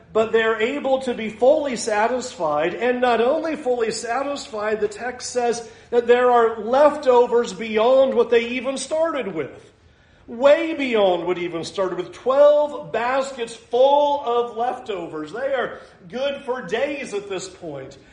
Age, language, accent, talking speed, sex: 40-59, English, American, 145 wpm, male